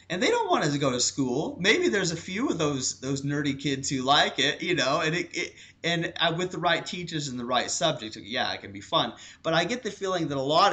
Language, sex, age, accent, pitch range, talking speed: English, male, 30-49, American, 120-165 Hz, 275 wpm